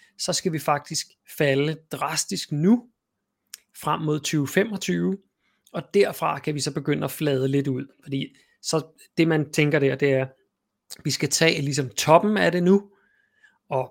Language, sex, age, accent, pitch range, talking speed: Danish, male, 30-49, native, 135-175 Hz, 165 wpm